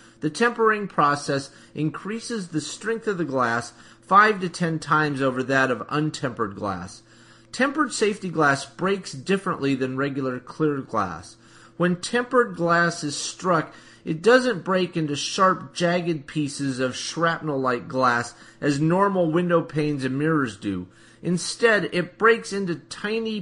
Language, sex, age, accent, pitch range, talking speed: English, male, 30-49, American, 135-180 Hz, 140 wpm